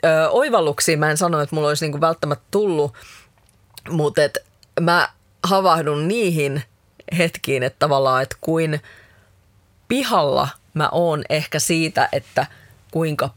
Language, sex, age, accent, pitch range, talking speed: Finnish, female, 30-49, native, 135-165 Hz, 120 wpm